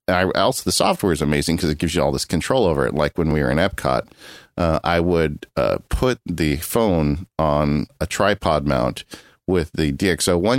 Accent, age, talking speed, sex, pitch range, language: American, 40-59, 200 wpm, male, 75-95 Hz, English